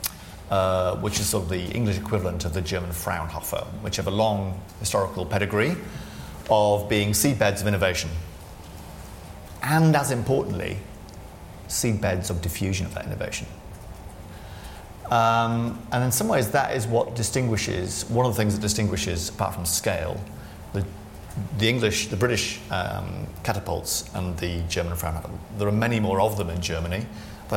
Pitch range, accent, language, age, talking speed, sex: 90-110 Hz, British, English, 40-59, 150 wpm, male